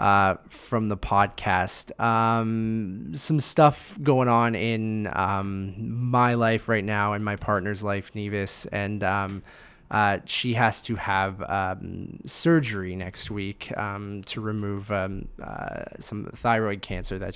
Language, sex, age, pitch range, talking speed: English, male, 20-39, 100-120 Hz, 140 wpm